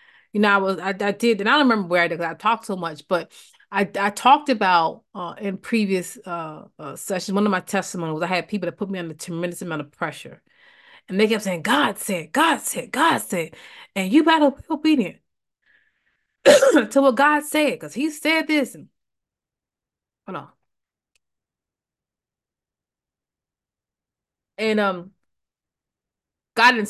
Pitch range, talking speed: 180-240 Hz, 165 wpm